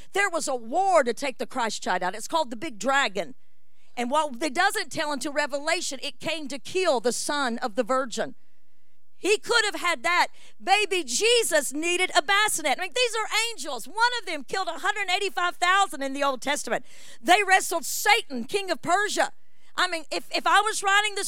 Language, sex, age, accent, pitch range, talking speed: English, female, 50-69, American, 225-355 Hz, 195 wpm